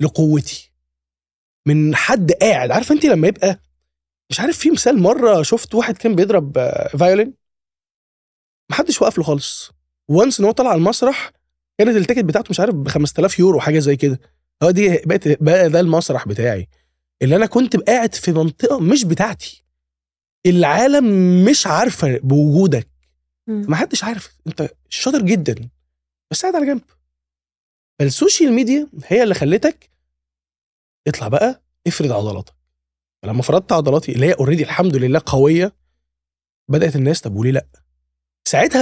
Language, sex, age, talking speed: Arabic, male, 20-39, 140 wpm